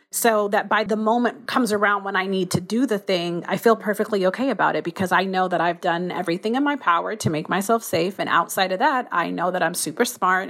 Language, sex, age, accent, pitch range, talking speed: English, female, 30-49, American, 185-220 Hz, 250 wpm